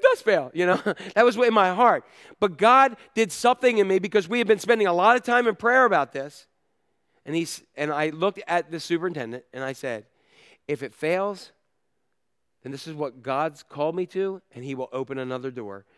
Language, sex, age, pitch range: English, male, 40-59, 185-250 Hz